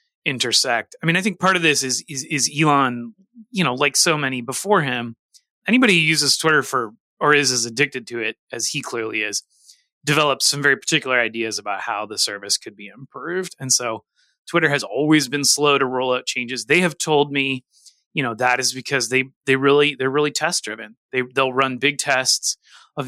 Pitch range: 120-155 Hz